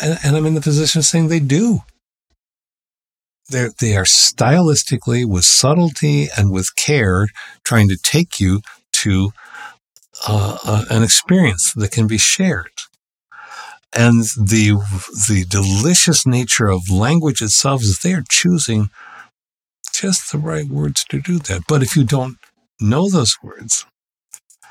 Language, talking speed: English, 135 wpm